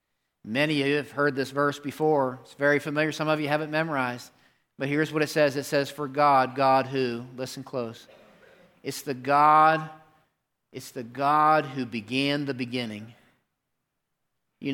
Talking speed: 165 wpm